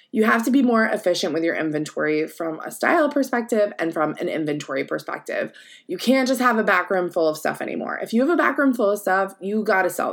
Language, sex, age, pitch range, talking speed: English, female, 20-39, 185-255 Hz, 235 wpm